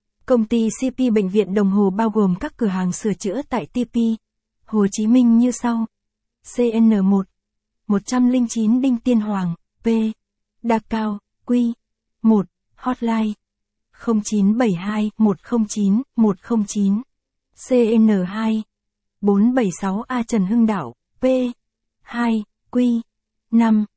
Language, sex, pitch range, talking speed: Vietnamese, female, 200-235 Hz, 115 wpm